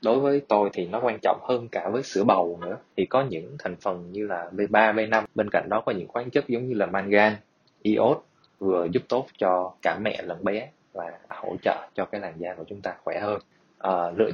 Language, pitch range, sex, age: Vietnamese, 100-120 Hz, male, 20-39